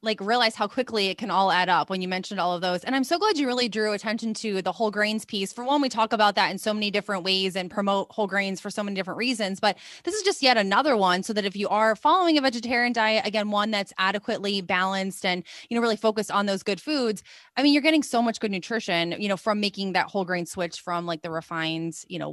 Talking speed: 270 wpm